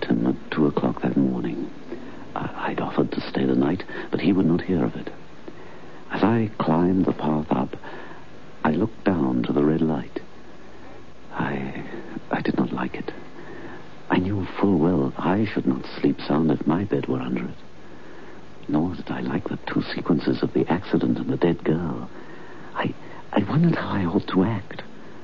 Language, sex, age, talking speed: English, male, 60-79, 180 wpm